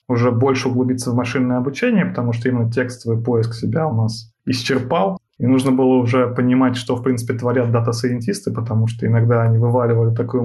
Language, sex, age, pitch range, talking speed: Russian, male, 20-39, 115-135 Hz, 180 wpm